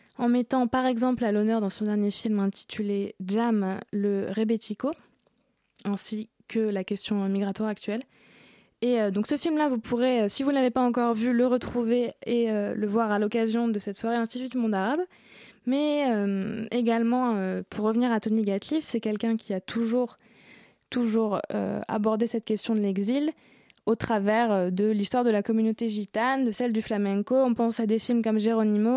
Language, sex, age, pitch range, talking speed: French, female, 20-39, 210-250 Hz, 185 wpm